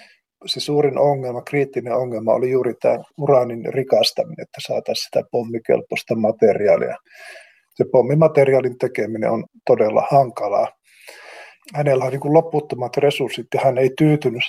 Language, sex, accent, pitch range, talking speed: Finnish, male, native, 120-140 Hz, 130 wpm